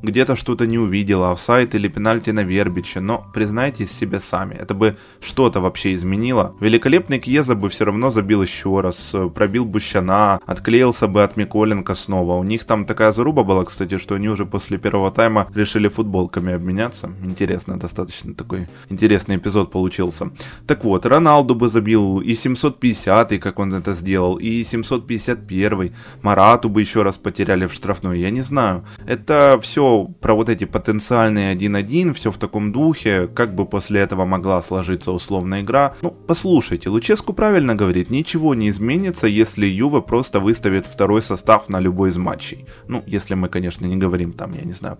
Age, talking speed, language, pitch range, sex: 20-39, 170 wpm, Ukrainian, 95-120 Hz, male